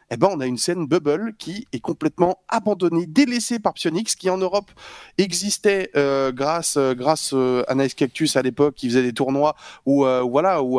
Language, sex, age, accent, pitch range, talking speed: French, male, 20-39, French, 125-170 Hz, 190 wpm